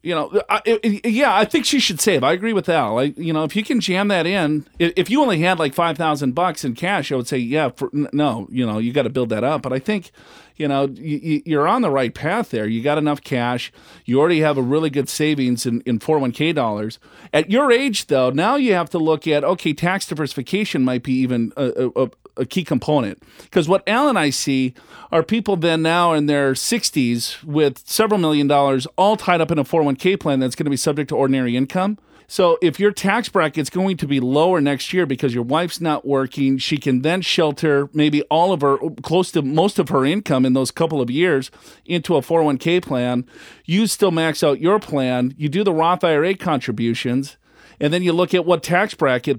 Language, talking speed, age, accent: English, 225 wpm, 40-59, American